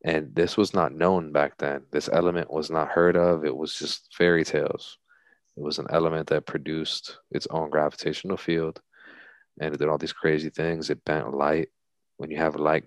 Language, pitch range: English, 75-85 Hz